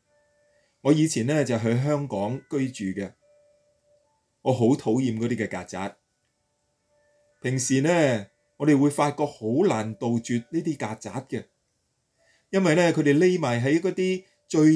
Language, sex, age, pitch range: Chinese, male, 30-49, 125-170 Hz